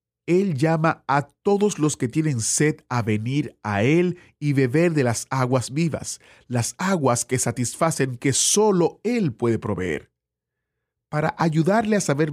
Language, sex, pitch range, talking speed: Spanish, male, 115-165 Hz, 150 wpm